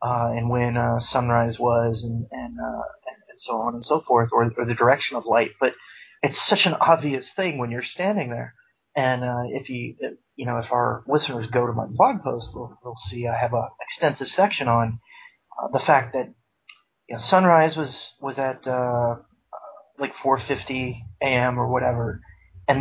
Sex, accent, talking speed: male, American, 190 wpm